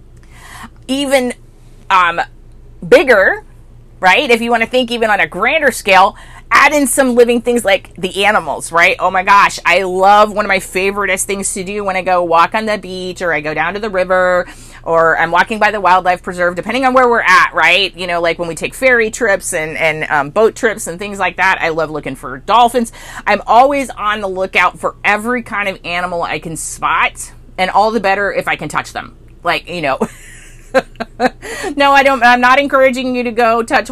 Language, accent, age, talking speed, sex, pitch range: English, American, 30-49, 210 wpm, female, 155-210 Hz